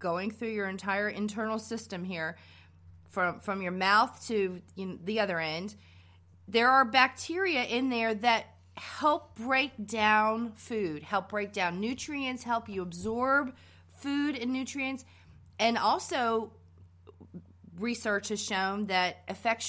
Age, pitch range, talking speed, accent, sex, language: 30-49, 180-235 Hz, 135 wpm, American, female, English